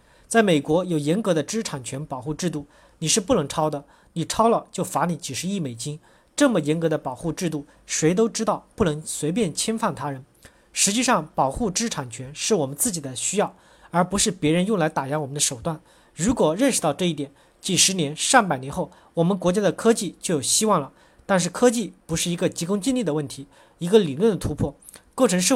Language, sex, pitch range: Chinese, male, 150-215 Hz